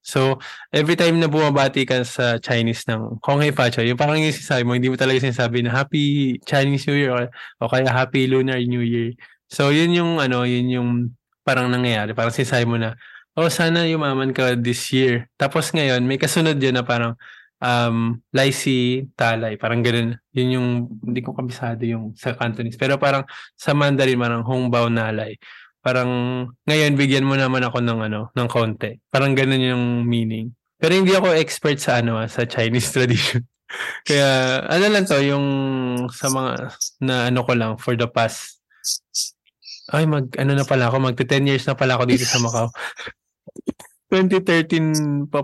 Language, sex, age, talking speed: Filipino, male, 20-39, 170 wpm